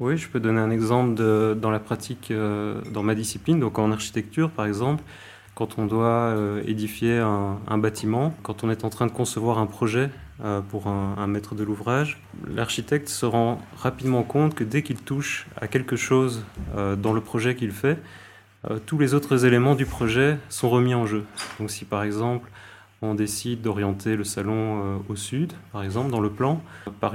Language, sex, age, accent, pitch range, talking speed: French, male, 30-49, French, 105-125 Hz, 185 wpm